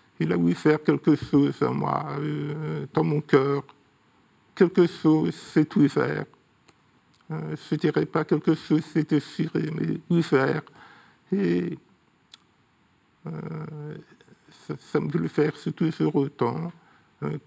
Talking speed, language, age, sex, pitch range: 125 wpm, French, 50-69, male, 130-160 Hz